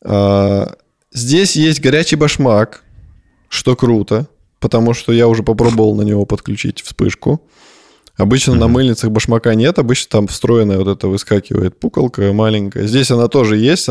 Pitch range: 110-135 Hz